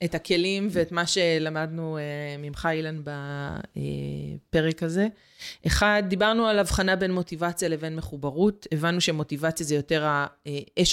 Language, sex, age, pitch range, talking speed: Hebrew, female, 30-49, 155-190 Hz, 125 wpm